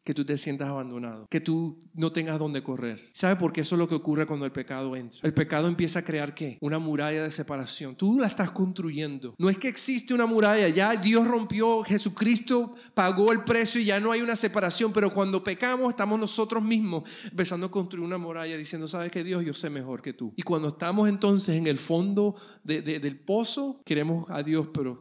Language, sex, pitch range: Spanish, male, 145-190 Hz